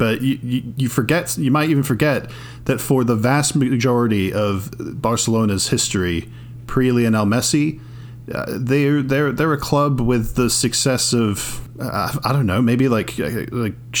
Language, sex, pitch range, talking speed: English, male, 105-125 Hz, 160 wpm